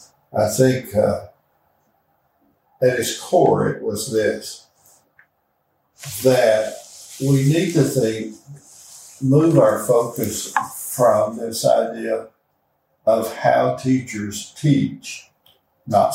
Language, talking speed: English, 90 wpm